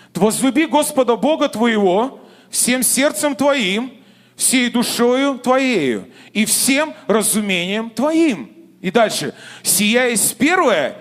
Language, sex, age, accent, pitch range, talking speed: Russian, male, 30-49, native, 185-275 Hz, 100 wpm